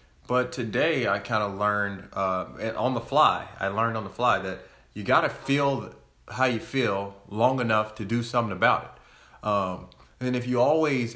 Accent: American